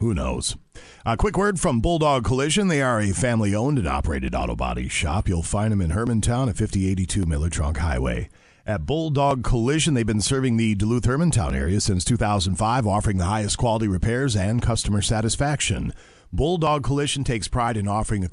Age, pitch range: 40-59, 90-130 Hz